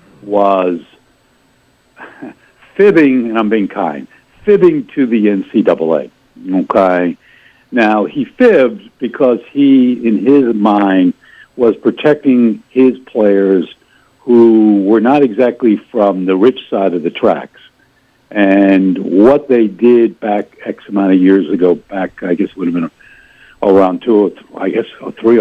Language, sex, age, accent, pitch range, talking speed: English, male, 70-89, American, 100-130 Hz, 135 wpm